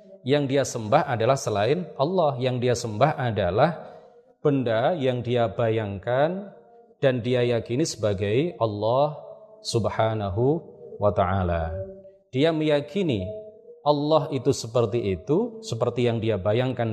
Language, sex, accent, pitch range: Indonesian, male, native, 110-150 Hz